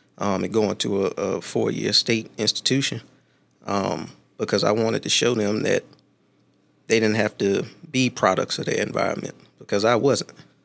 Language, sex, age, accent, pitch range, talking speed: English, male, 20-39, American, 105-125 Hz, 165 wpm